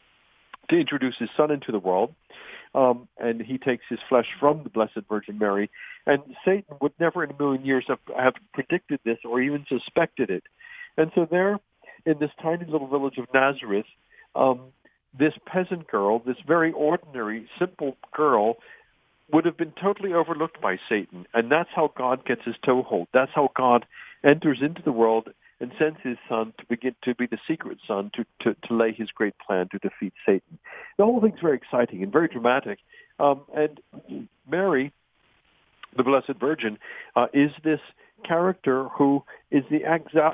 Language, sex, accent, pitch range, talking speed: English, male, American, 120-160 Hz, 175 wpm